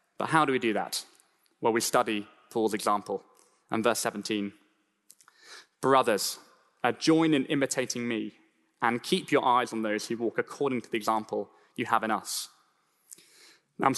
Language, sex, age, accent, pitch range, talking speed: English, male, 10-29, British, 120-145 Hz, 160 wpm